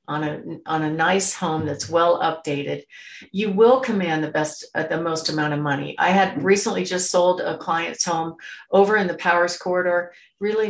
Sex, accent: female, American